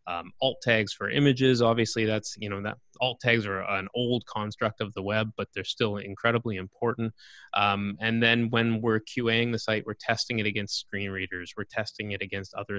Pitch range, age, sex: 100-120 Hz, 20-39, male